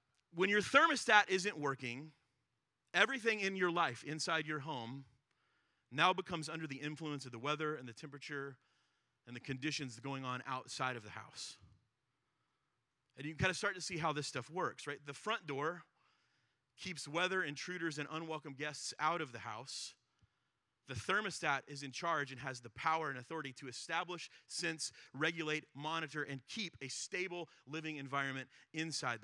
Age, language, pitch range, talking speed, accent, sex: 30-49, English, 140-180 Hz, 165 wpm, American, male